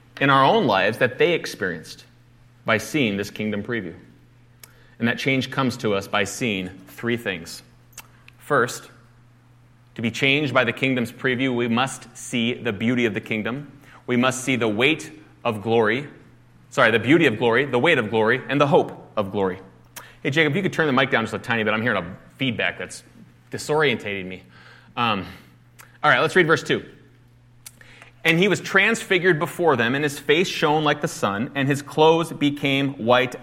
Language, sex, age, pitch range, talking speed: English, male, 30-49, 110-135 Hz, 185 wpm